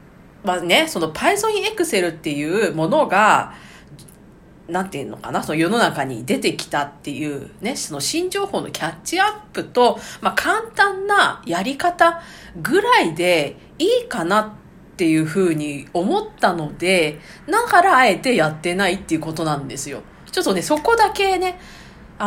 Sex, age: female, 40-59